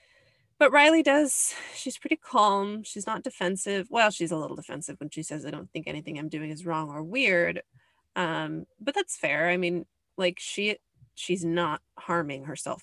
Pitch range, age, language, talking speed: 155-190 Hz, 20-39, English, 180 wpm